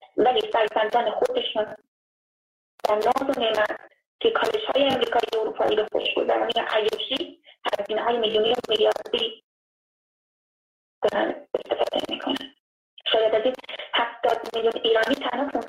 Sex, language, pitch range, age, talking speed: female, Persian, 235-310 Hz, 20-39, 95 wpm